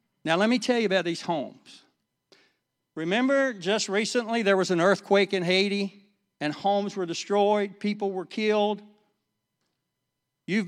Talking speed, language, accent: 140 wpm, English, American